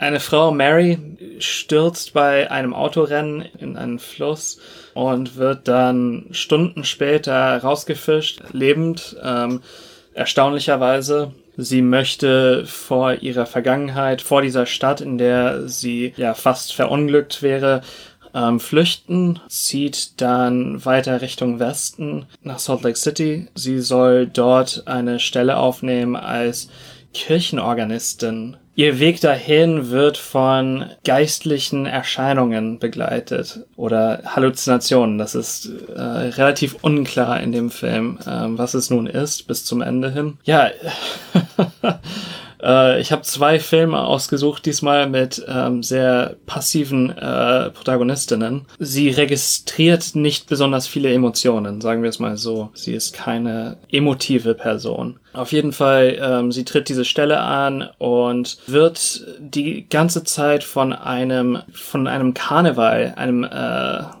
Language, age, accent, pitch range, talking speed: German, 30-49, German, 125-150 Hz, 120 wpm